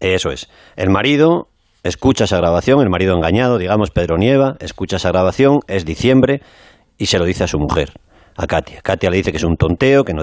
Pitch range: 85-110 Hz